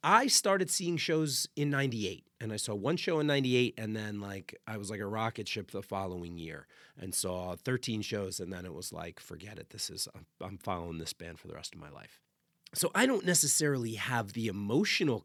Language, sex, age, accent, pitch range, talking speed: English, male, 30-49, American, 100-135 Hz, 215 wpm